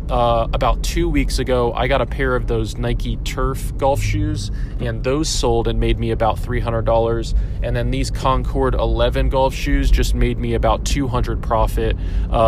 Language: English